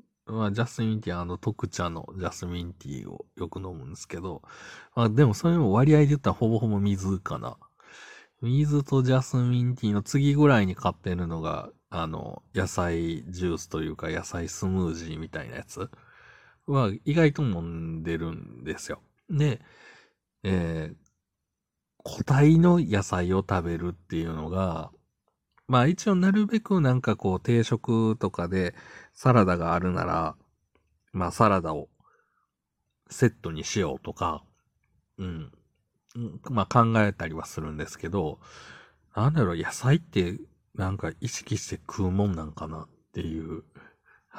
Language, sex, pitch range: Japanese, male, 85-125 Hz